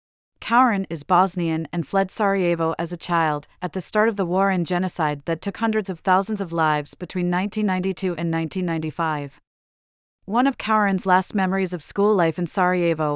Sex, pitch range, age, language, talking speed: female, 165-195 Hz, 40-59, English, 175 wpm